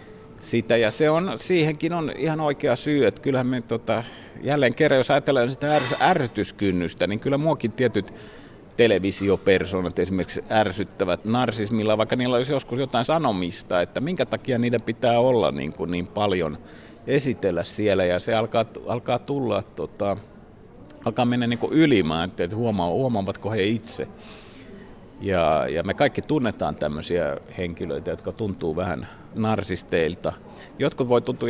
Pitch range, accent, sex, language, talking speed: 100-130 Hz, native, male, Finnish, 140 wpm